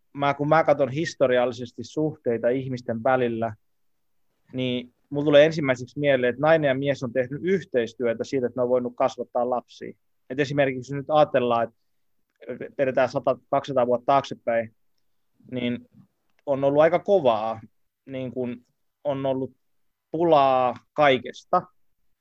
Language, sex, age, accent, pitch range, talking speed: Finnish, male, 20-39, native, 120-145 Hz, 125 wpm